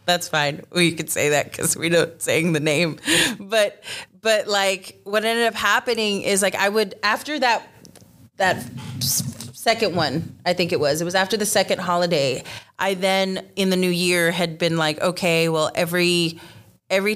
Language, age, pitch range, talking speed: English, 30-49, 165-200 Hz, 180 wpm